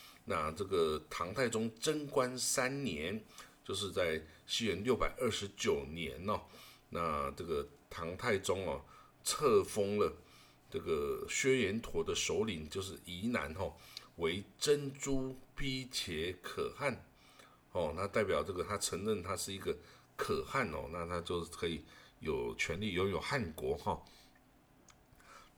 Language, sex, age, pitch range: Chinese, male, 50-69, 90-135 Hz